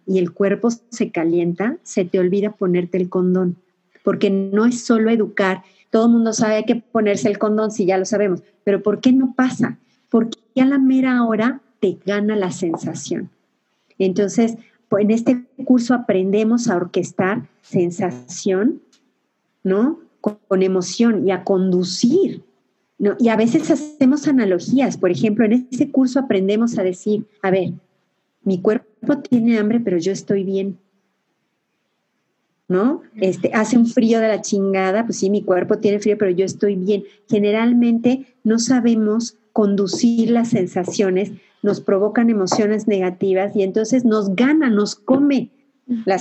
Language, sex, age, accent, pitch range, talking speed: Spanish, female, 40-59, Mexican, 190-235 Hz, 150 wpm